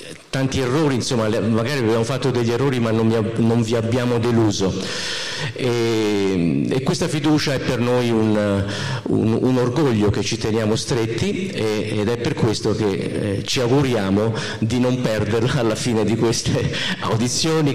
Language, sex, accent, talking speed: Italian, male, native, 160 wpm